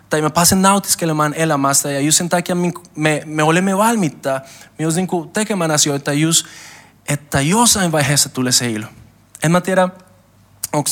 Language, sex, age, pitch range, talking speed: Finnish, male, 20-39, 135-180 Hz, 150 wpm